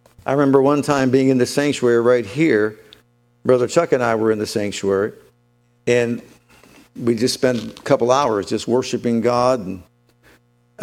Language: English